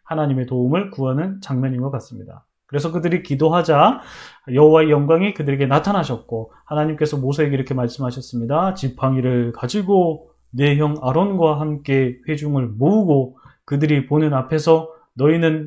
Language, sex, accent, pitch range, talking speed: English, male, Korean, 135-190 Hz, 110 wpm